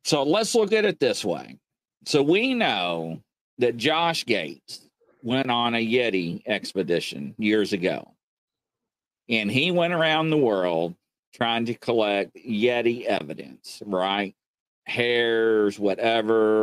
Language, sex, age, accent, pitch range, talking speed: English, male, 40-59, American, 110-170 Hz, 125 wpm